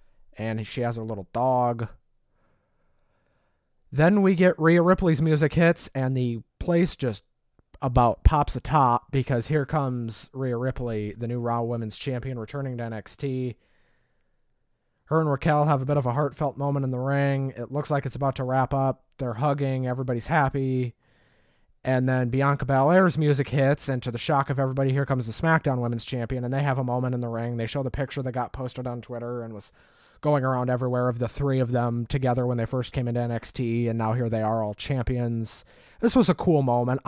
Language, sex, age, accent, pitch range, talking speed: English, male, 30-49, American, 115-140 Hz, 195 wpm